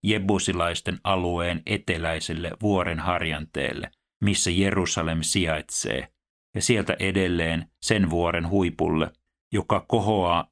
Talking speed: 90 wpm